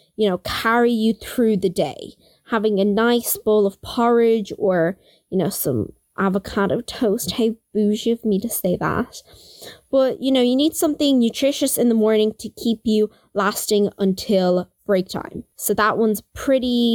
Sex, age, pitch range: female, 20-39, 195-240 Hz